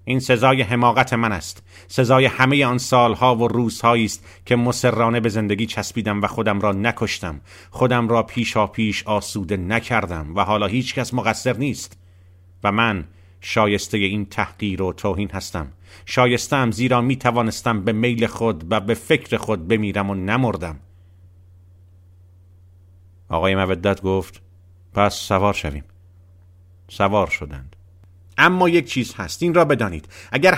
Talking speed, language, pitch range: 135 wpm, Persian, 95-130 Hz